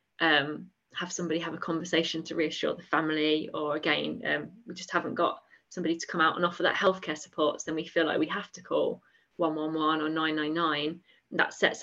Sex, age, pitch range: female, 20-39, 170-220 Hz